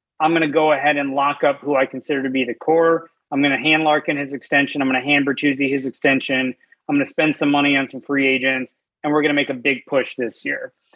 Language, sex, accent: English, male, American